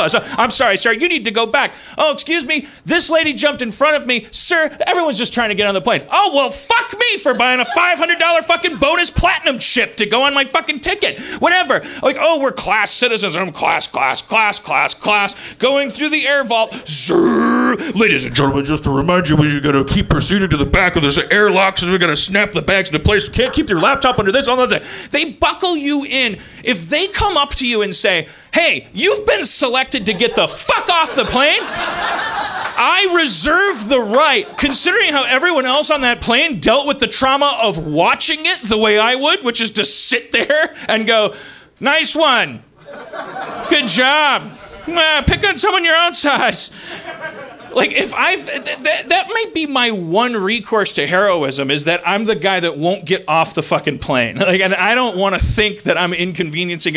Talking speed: 210 wpm